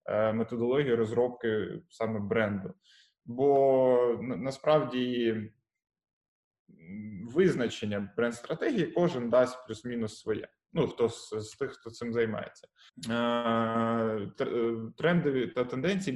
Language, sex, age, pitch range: Ukrainian, male, 20-39, 115-145 Hz